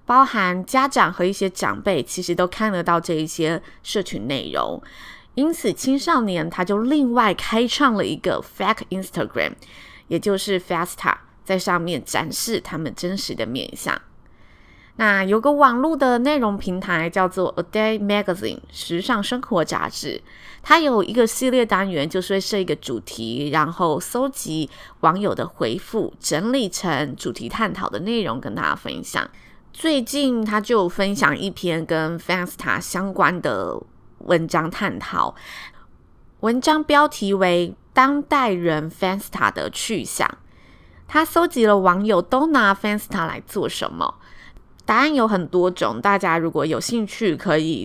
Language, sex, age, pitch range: Chinese, female, 20-39, 175-245 Hz